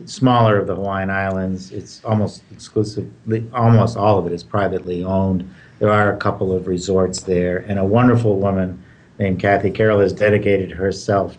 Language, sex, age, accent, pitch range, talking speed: English, male, 50-69, American, 95-115 Hz, 170 wpm